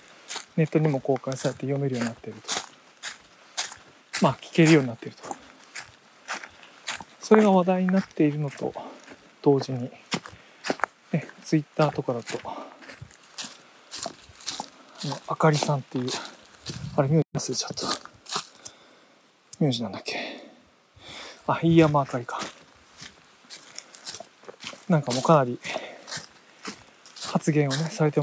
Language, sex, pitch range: Japanese, male, 135-170 Hz